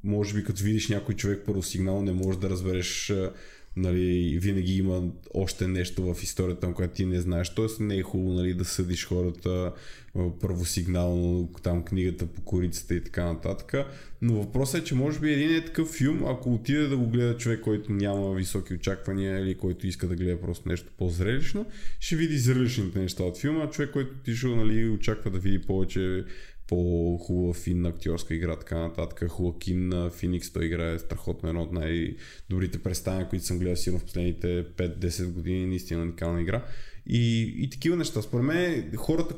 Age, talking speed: 20-39, 180 wpm